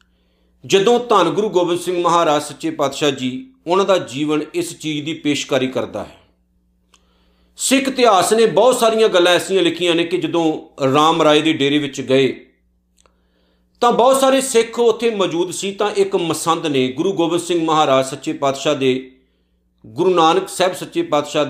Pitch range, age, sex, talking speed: 125-190 Hz, 50-69, male, 160 wpm